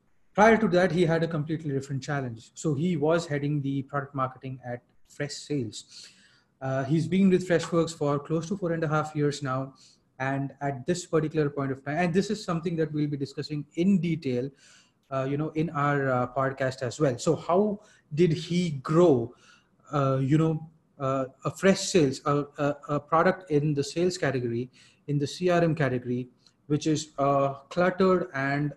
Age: 30-49